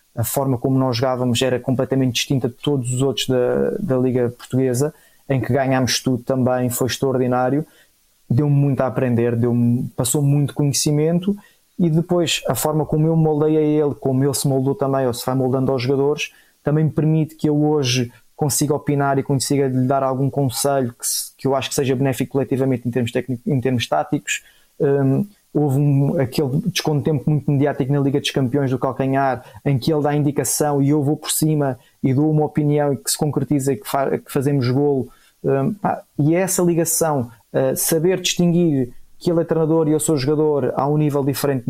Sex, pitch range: male, 130-150 Hz